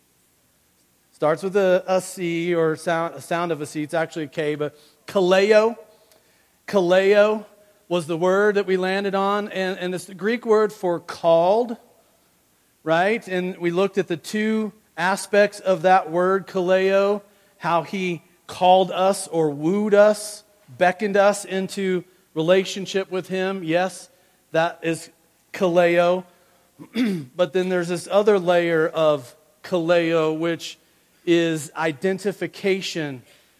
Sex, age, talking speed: male, 40-59, 130 wpm